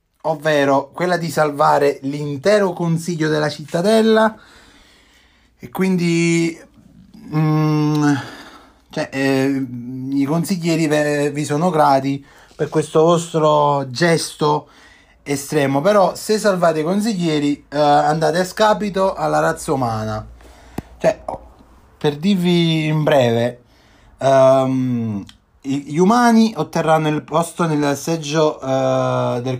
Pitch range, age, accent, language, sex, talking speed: 135-165 Hz, 30-49, native, Italian, male, 105 wpm